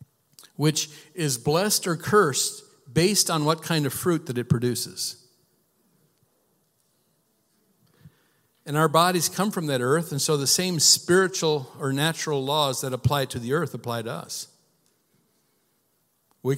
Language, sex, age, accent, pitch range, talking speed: English, male, 50-69, American, 135-175 Hz, 140 wpm